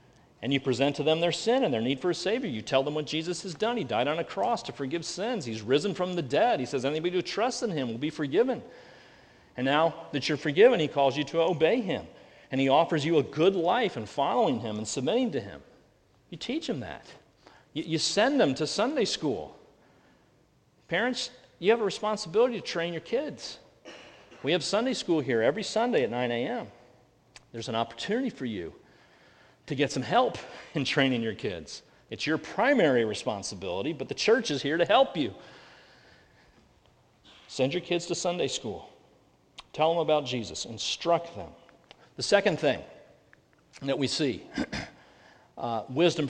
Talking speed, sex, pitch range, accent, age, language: 185 wpm, male, 125-175 Hz, American, 40-59, English